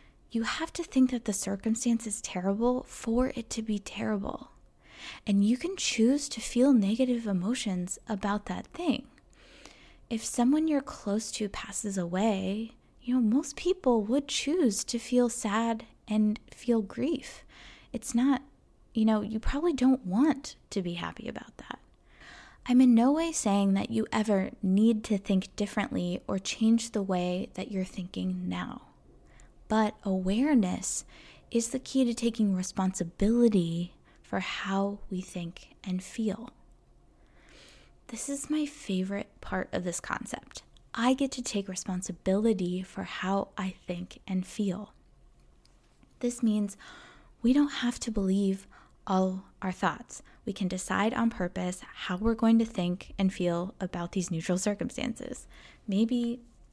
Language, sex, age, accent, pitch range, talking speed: English, female, 20-39, American, 190-245 Hz, 145 wpm